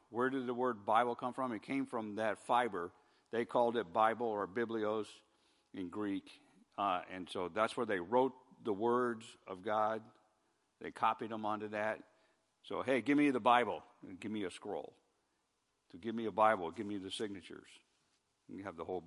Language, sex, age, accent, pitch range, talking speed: English, male, 50-69, American, 115-145 Hz, 195 wpm